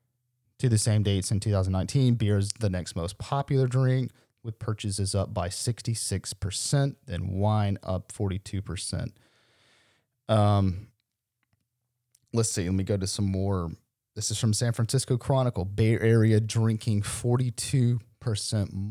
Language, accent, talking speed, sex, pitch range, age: English, American, 130 wpm, male, 100-115 Hz, 30-49